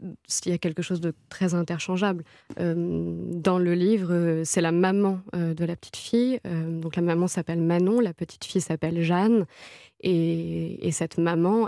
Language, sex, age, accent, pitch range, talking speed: French, female, 20-39, French, 165-185 Hz, 165 wpm